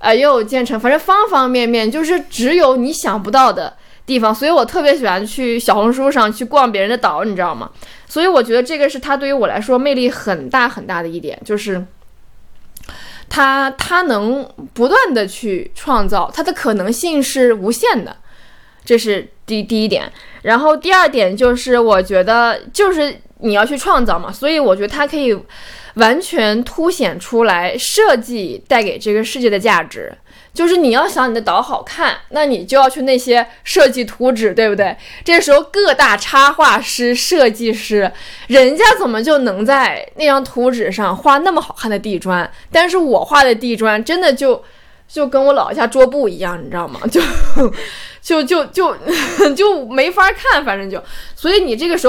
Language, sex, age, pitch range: Chinese, female, 20-39, 225-300 Hz